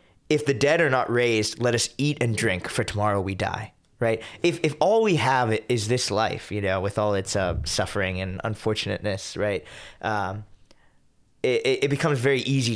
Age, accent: 20-39, American